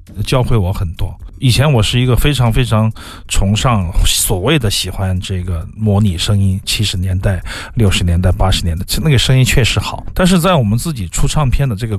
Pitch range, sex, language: 95-125 Hz, male, Chinese